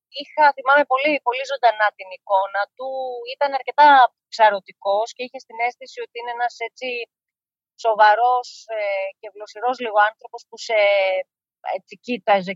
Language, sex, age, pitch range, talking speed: Greek, female, 30-49, 185-235 Hz, 120 wpm